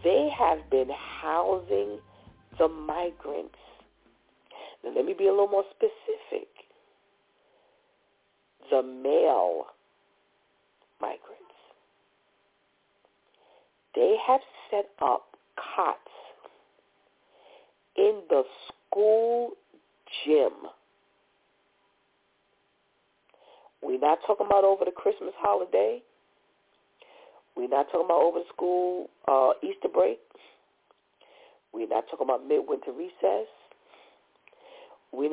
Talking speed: 80 wpm